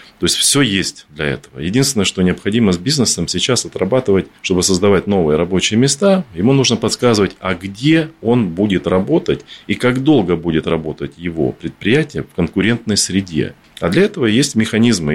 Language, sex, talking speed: Russian, male, 160 wpm